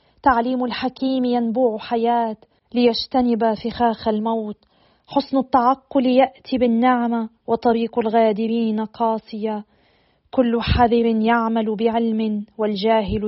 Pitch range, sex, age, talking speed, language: 205-230 Hz, female, 40-59, 90 wpm, Arabic